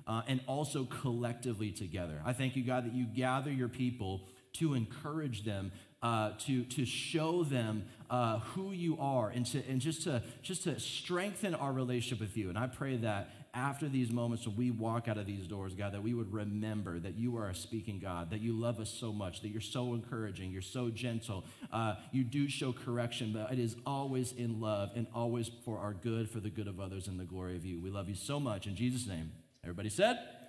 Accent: American